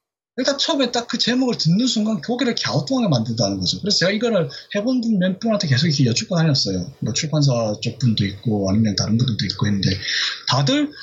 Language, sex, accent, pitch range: Korean, male, native, 130-200 Hz